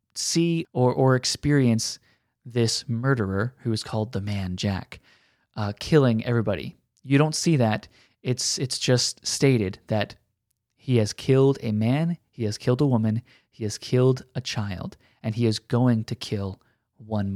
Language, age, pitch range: English, 20-39, 115-140 Hz